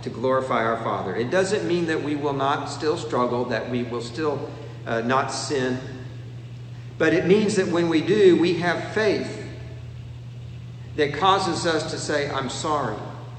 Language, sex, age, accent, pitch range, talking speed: English, male, 50-69, American, 120-150 Hz, 165 wpm